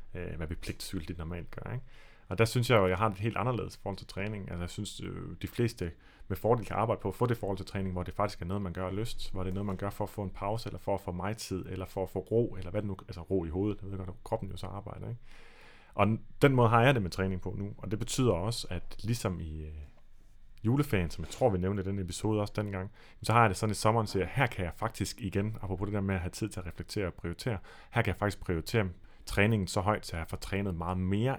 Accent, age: native, 30-49